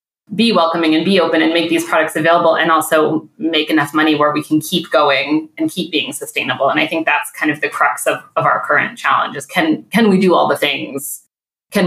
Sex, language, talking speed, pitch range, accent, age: female, English, 225 wpm, 155-190 Hz, American, 30-49